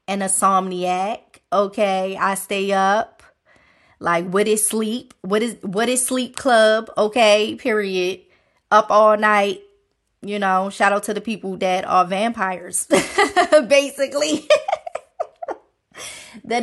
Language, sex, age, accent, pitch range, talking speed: English, female, 20-39, American, 185-235 Hz, 120 wpm